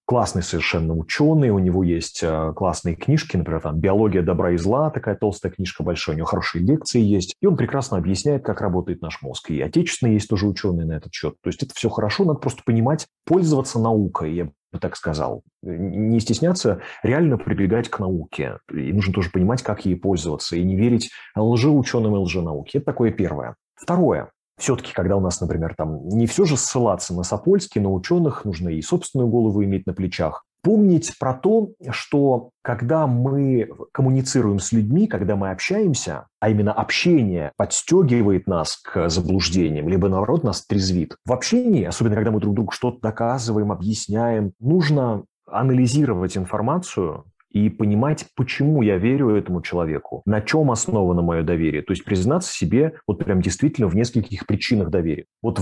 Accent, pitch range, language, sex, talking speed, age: native, 95-130 Hz, Russian, male, 175 wpm, 30-49